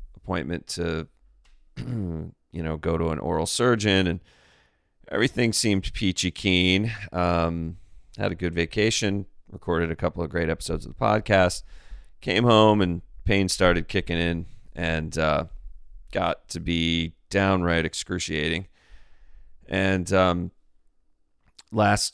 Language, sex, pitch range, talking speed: English, male, 80-95 Hz, 120 wpm